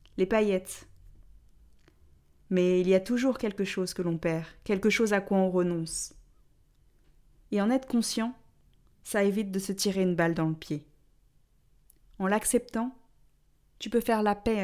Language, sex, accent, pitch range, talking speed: French, female, French, 180-225 Hz, 160 wpm